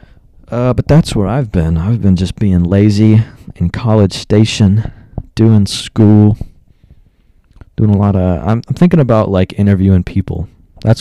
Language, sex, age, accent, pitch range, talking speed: English, male, 20-39, American, 90-115 Hz, 155 wpm